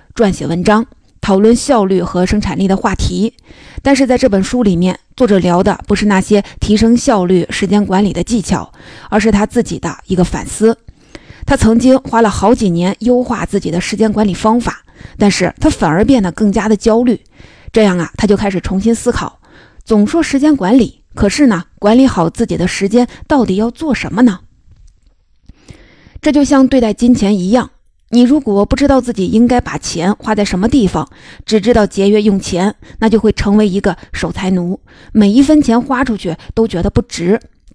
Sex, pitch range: female, 195-245 Hz